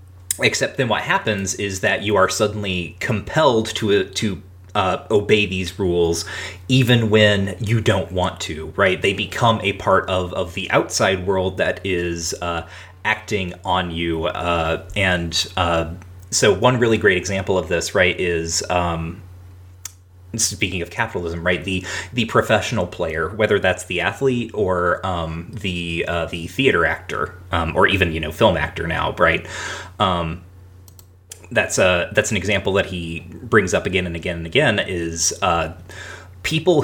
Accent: American